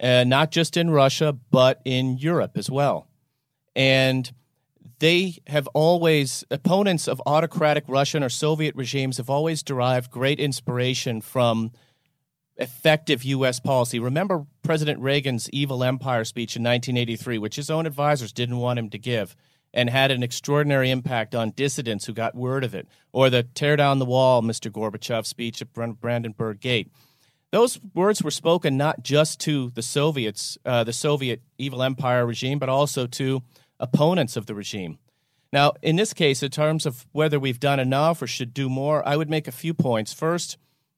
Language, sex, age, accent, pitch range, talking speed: English, male, 40-59, American, 125-150 Hz, 170 wpm